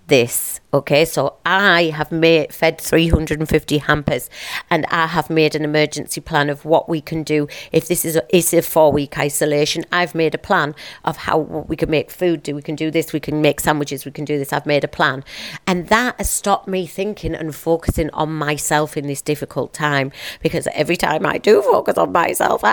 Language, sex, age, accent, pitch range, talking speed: English, female, 40-59, British, 150-185 Hz, 205 wpm